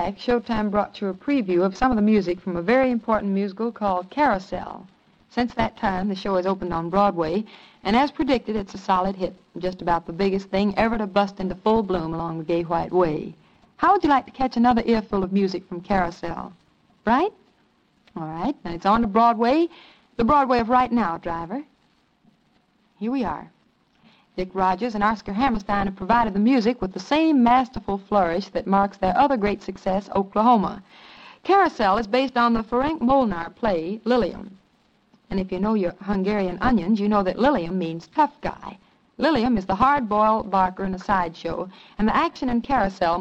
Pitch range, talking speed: 185-240 Hz, 185 wpm